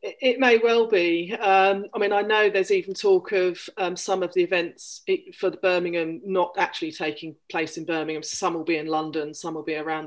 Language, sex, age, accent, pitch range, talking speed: English, female, 40-59, British, 160-205 Hz, 215 wpm